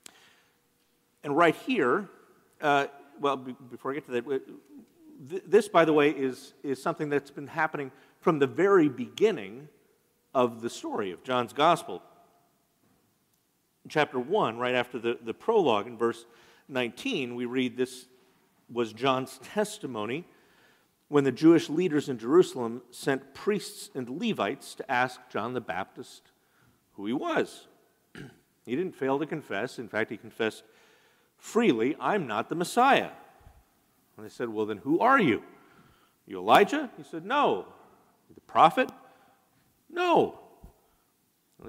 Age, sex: 50-69, male